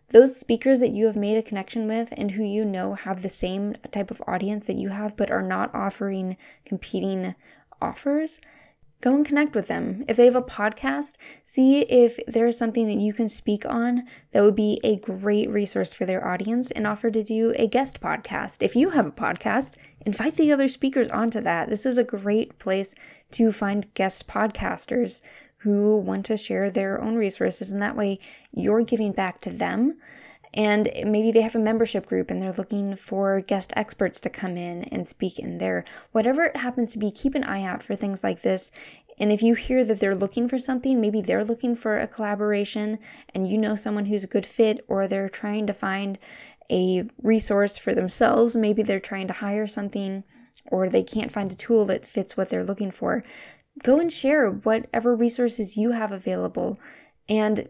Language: English